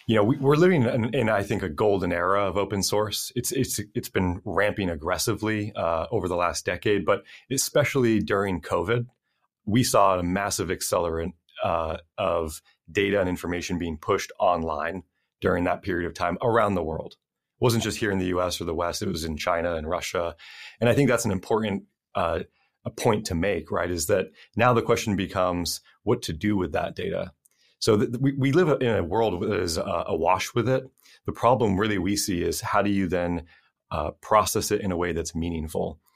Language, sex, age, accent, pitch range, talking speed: English, male, 30-49, American, 90-110 Hz, 200 wpm